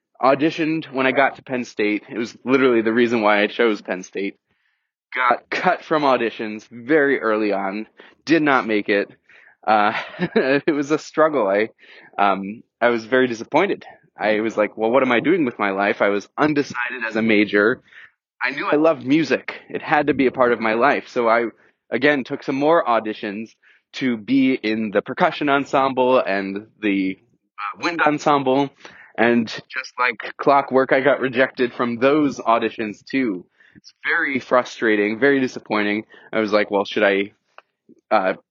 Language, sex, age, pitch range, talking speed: English, male, 20-39, 110-140 Hz, 170 wpm